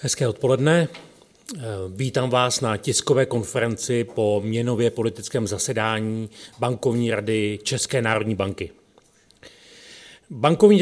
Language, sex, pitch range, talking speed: Czech, male, 110-145 Hz, 95 wpm